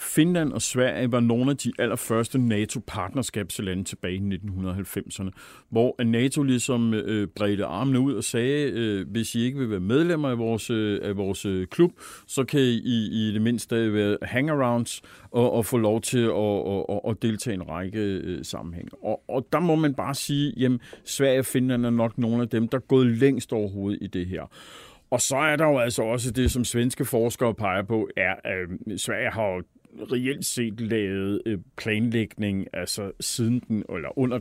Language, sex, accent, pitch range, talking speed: Danish, male, native, 105-125 Hz, 175 wpm